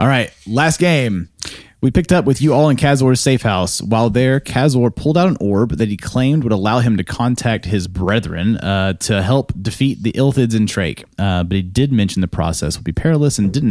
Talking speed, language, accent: 225 wpm, English, American